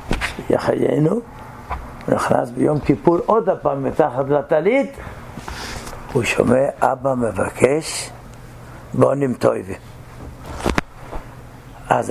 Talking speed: 75 wpm